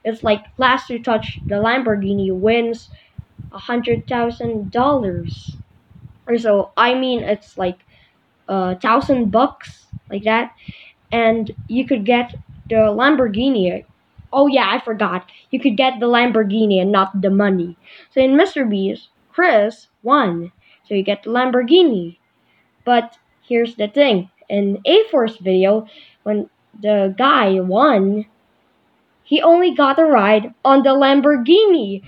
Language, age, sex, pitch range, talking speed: English, 20-39, female, 210-285 Hz, 130 wpm